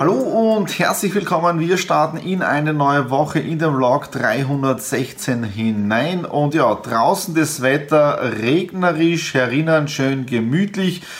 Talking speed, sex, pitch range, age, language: 130 wpm, male, 130-160 Hz, 30-49, German